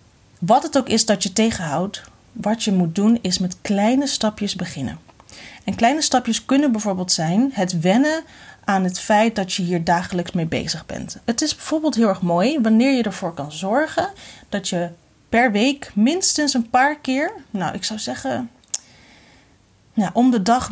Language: Dutch